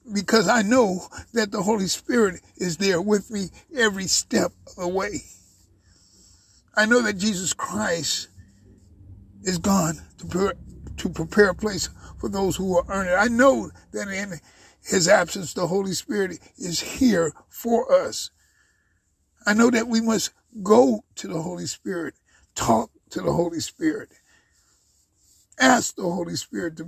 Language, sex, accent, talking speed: English, male, American, 150 wpm